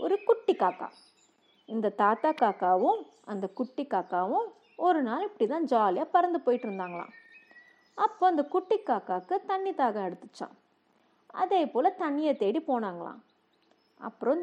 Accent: native